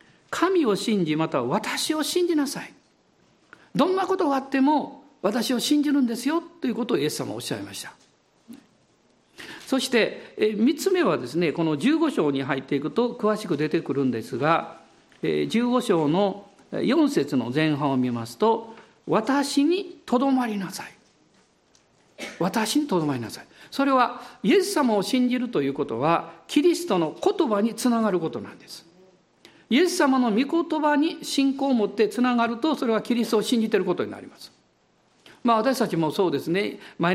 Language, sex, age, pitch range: Japanese, male, 50-69, 190-285 Hz